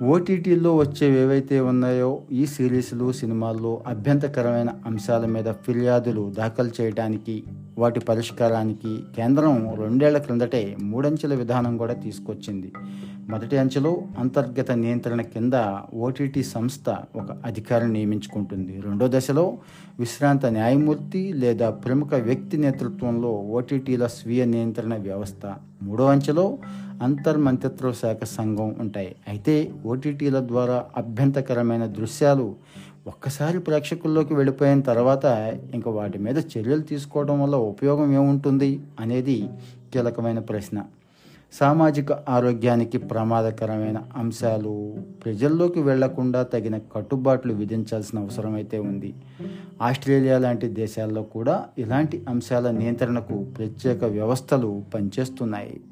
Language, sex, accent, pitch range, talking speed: Telugu, male, native, 110-140 Hz, 95 wpm